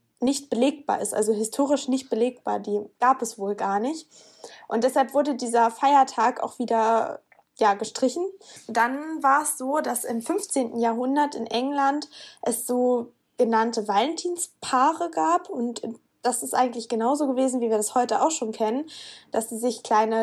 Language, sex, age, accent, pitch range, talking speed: German, female, 20-39, German, 225-275 Hz, 155 wpm